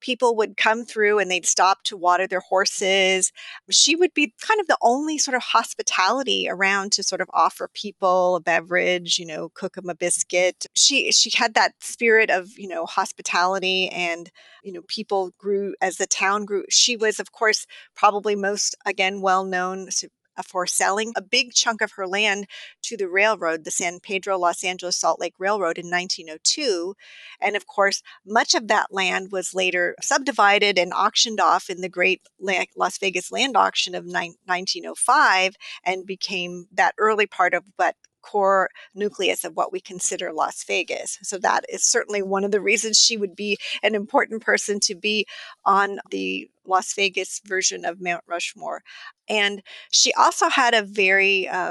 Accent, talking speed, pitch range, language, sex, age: American, 175 wpm, 185-220 Hz, English, female, 40-59